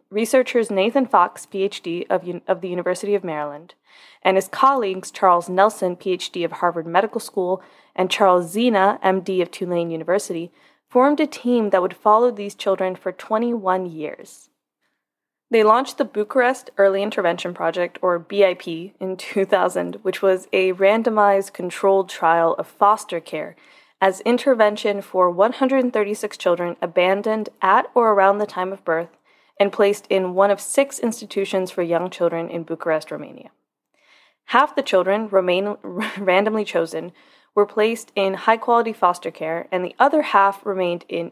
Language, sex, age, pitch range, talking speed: English, female, 20-39, 180-215 Hz, 145 wpm